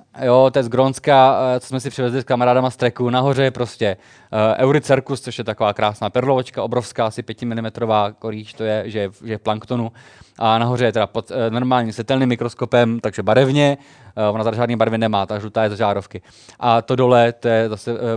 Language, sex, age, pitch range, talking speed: Czech, male, 20-39, 105-130 Hz, 210 wpm